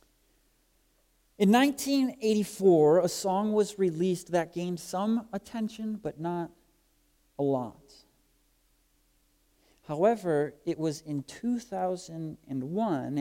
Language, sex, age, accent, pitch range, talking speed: English, male, 40-59, American, 130-185 Hz, 85 wpm